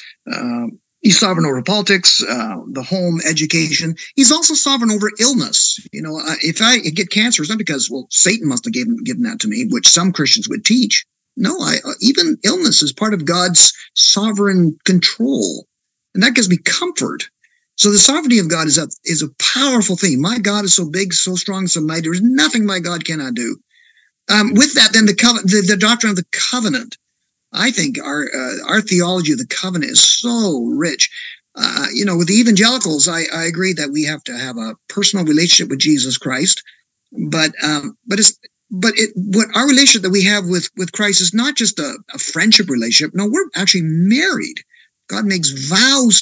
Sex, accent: male, American